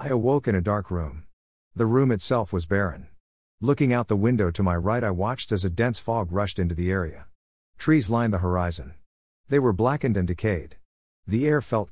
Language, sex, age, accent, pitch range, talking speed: English, male, 50-69, American, 85-115 Hz, 200 wpm